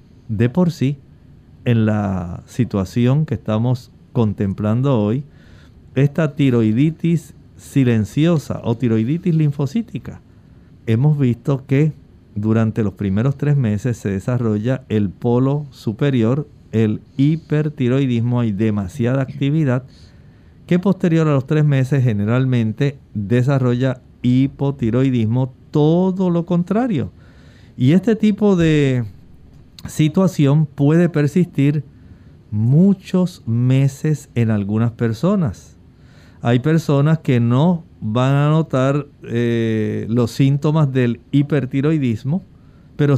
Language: Spanish